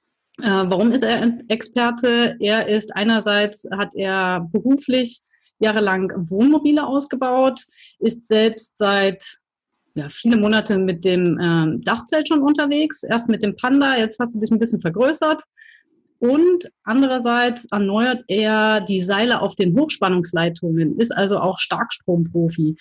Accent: German